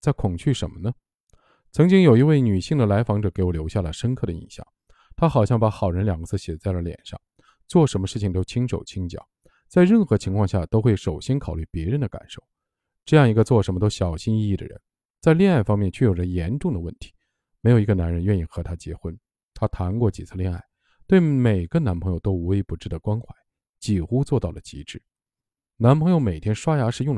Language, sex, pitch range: Chinese, male, 95-130 Hz